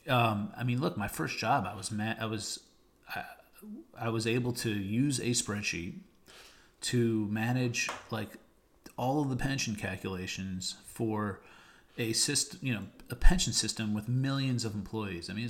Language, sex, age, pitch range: English, male, 40-59, 100-125 Hz